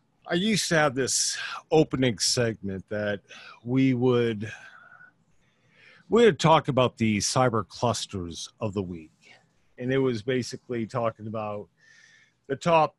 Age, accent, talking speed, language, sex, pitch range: 50-69, American, 130 wpm, English, male, 110-135 Hz